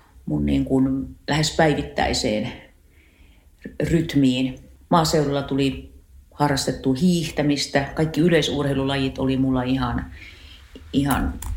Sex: female